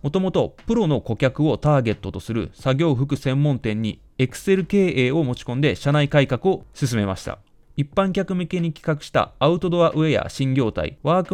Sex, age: male, 20-39